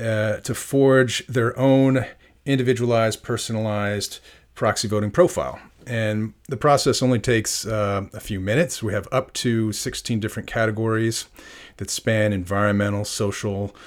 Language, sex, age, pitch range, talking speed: English, male, 40-59, 105-125 Hz, 130 wpm